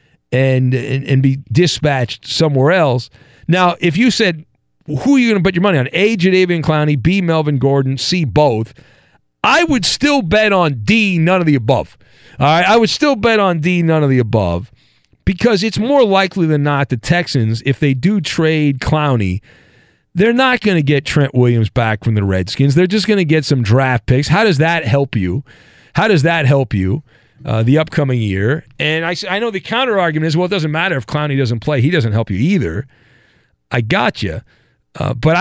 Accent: American